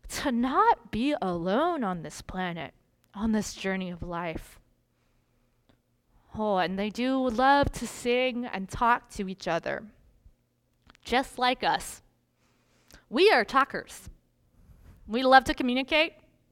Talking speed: 125 wpm